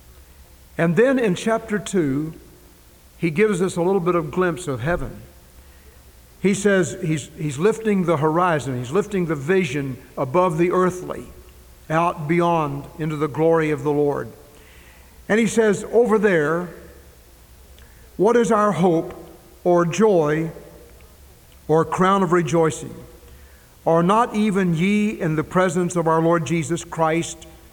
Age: 60-79